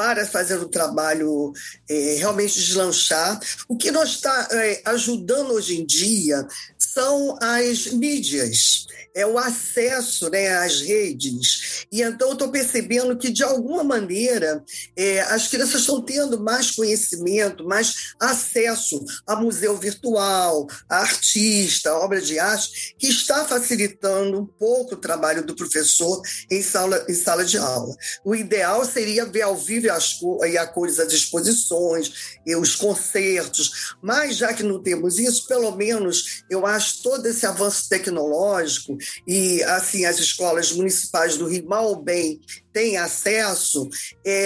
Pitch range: 180-235 Hz